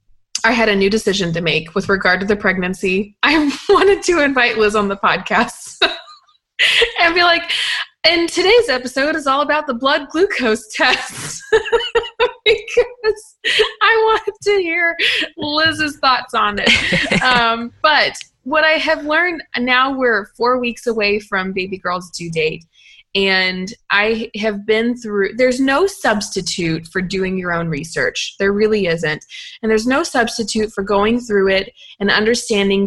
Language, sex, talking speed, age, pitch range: English, female, 155 wpm, 20-39, 190-285 Hz